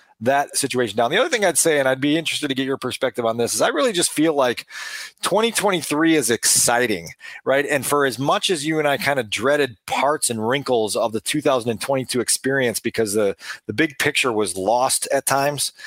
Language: English